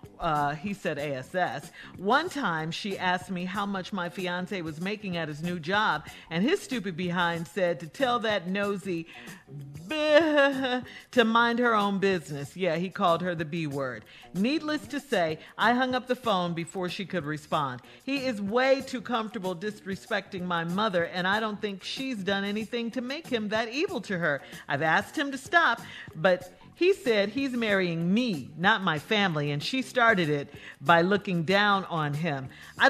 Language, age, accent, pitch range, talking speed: English, 50-69, American, 175-240 Hz, 175 wpm